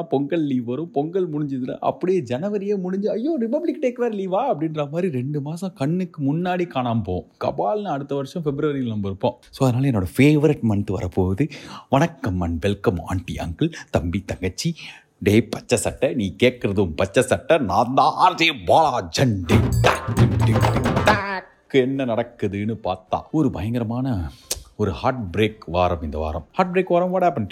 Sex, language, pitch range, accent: male, Tamil, 105-150 Hz, native